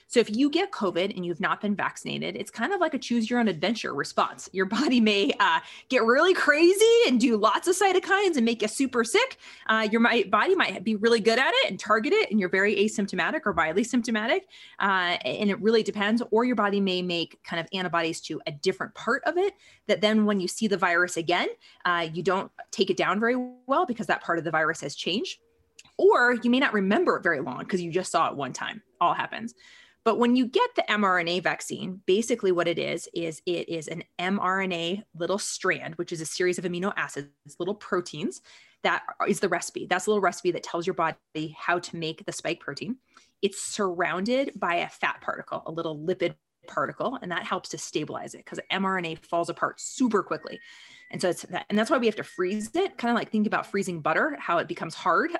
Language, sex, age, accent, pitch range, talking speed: English, female, 20-39, American, 175-240 Hz, 225 wpm